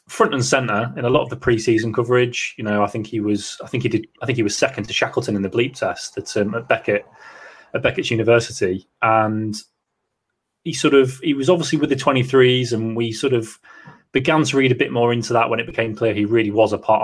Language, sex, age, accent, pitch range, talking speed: English, male, 20-39, British, 105-120 Hz, 245 wpm